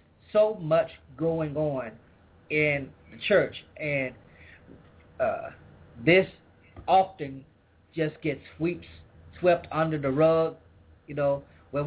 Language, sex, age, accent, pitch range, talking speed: English, male, 30-49, American, 135-180 Hz, 105 wpm